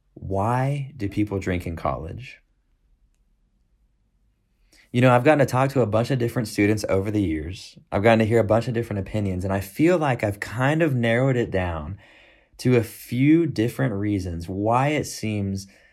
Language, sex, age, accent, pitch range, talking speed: English, male, 30-49, American, 105-135 Hz, 180 wpm